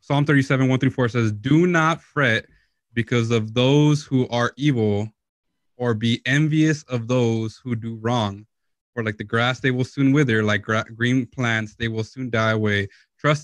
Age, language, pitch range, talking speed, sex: 20-39, English, 115-135 Hz, 185 wpm, male